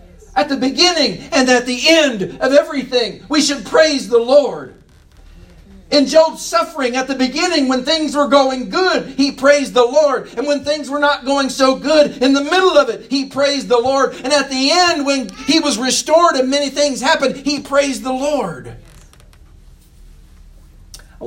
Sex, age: male, 50-69